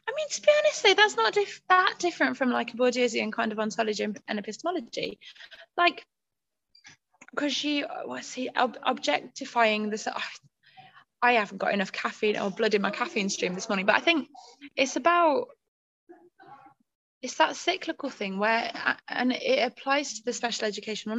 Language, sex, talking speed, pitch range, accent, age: English, female, 160 wpm, 210-285 Hz, British, 20-39